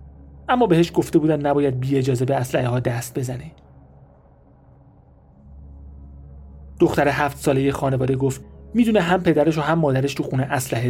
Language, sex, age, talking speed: Persian, male, 30-49, 145 wpm